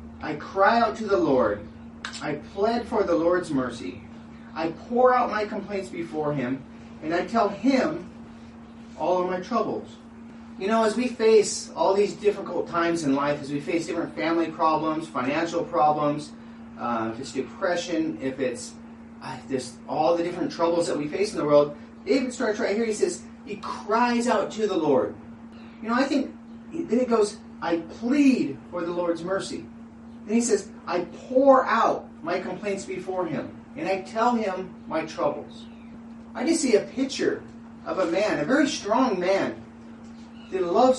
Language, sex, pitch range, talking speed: English, male, 175-235 Hz, 175 wpm